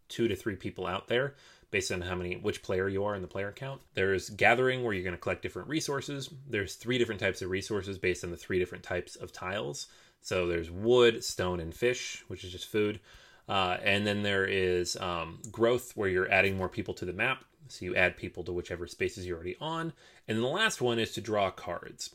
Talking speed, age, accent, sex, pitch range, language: 230 wpm, 30-49, American, male, 90-120 Hz, English